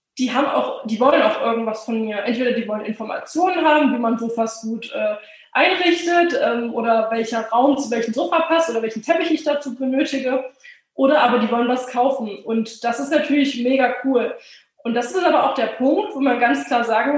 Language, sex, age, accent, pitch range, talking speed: German, female, 20-39, German, 230-280 Hz, 205 wpm